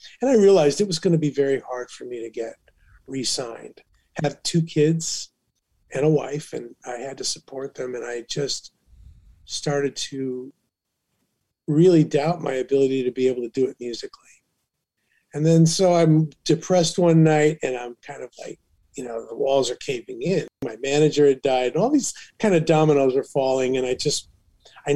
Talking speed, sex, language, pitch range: 190 wpm, male, English, 125-155 Hz